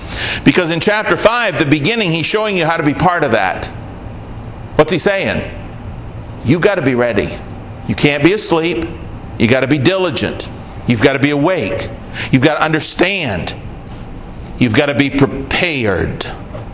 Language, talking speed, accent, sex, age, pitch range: English, 165 wpm, American, male, 50-69, 110-160 Hz